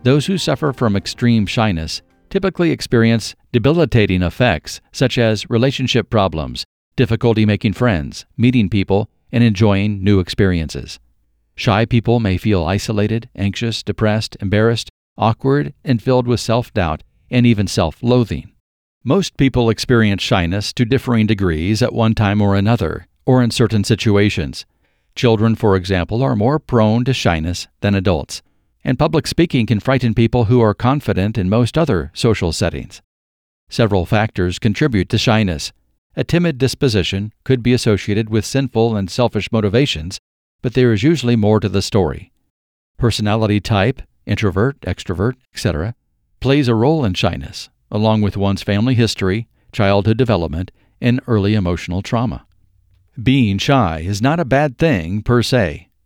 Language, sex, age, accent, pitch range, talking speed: English, male, 50-69, American, 95-125 Hz, 140 wpm